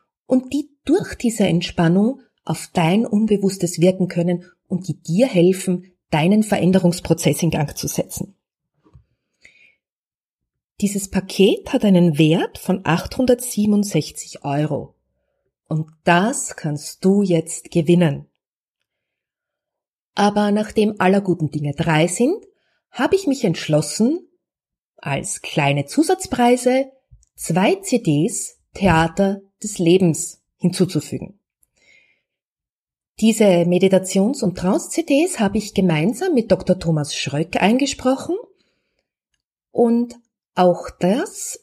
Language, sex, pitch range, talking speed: German, female, 170-240 Hz, 100 wpm